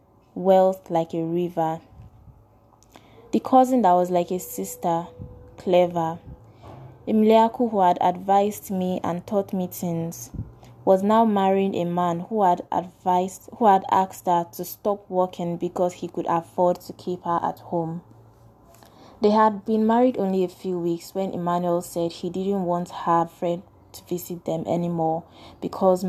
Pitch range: 165-190 Hz